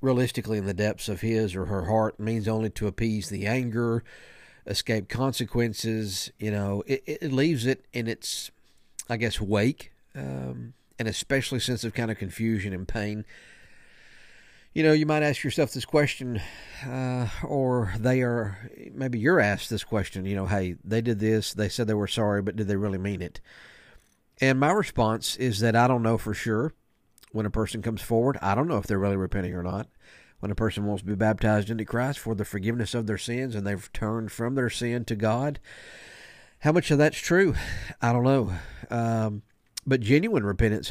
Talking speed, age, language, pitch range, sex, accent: 190 wpm, 50-69, English, 105-125 Hz, male, American